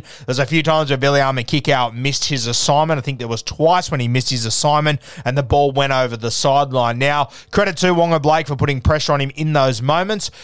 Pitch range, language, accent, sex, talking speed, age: 125-155 Hz, English, Australian, male, 235 wpm, 20-39